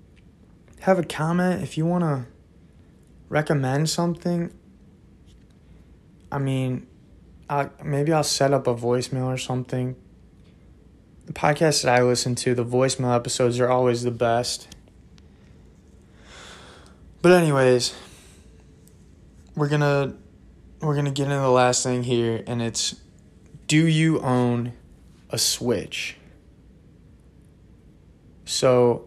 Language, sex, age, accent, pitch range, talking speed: English, male, 20-39, American, 95-135 Hz, 115 wpm